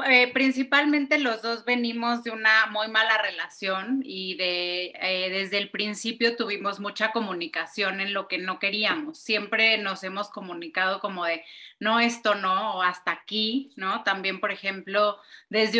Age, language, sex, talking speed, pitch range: 30-49, Spanish, female, 155 wpm, 195-235 Hz